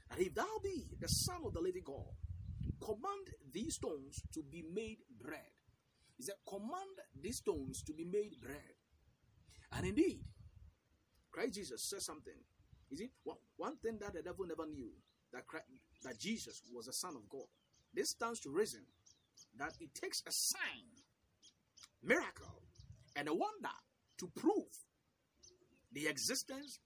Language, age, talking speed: English, 50-69, 150 wpm